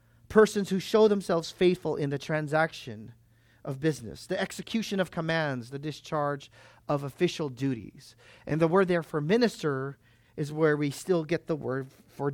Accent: American